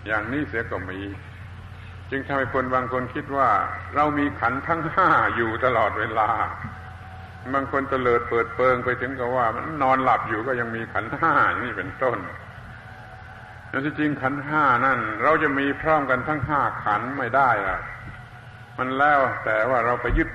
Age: 70-89